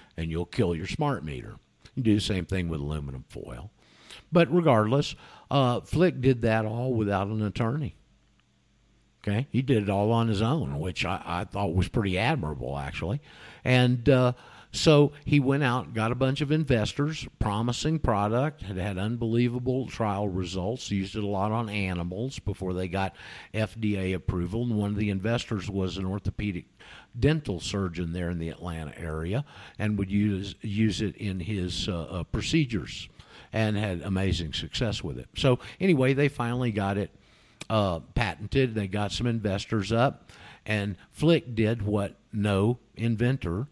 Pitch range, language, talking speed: 95-125 Hz, English, 165 wpm